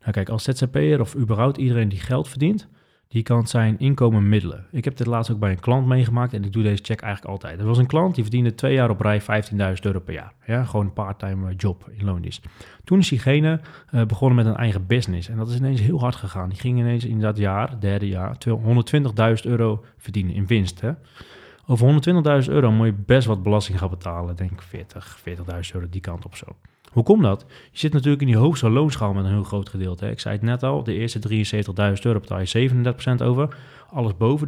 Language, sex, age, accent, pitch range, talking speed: Dutch, male, 30-49, Dutch, 100-130 Hz, 225 wpm